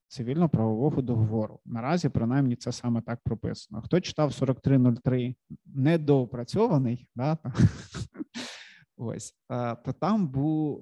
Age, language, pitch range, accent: 30-49, Ukrainian, 120-145 Hz, native